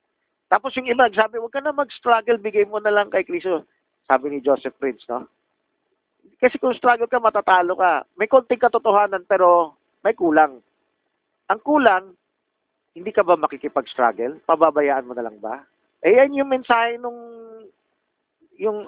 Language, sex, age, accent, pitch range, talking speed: Filipino, male, 40-59, native, 175-240 Hz, 155 wpm